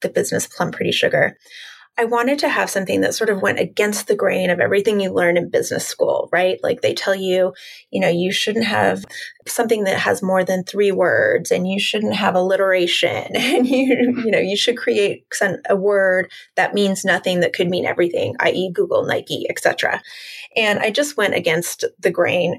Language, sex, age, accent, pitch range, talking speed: English, female, 20-39, American, 185-275 Hz, 195 wpm